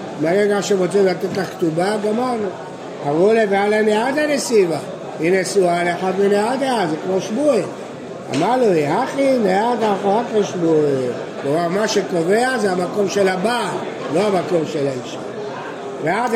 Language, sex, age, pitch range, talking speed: Hebrew, male, 60-79, 185-225 Hz, 135 wpm